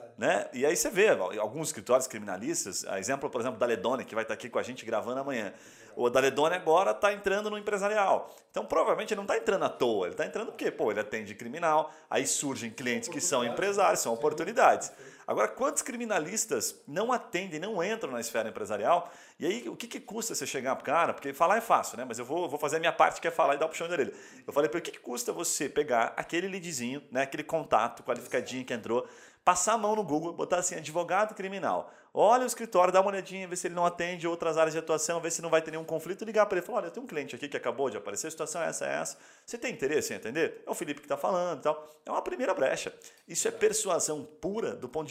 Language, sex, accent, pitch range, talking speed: Portuguese, male, Brazilian, 155-215 Hz, 245 wpm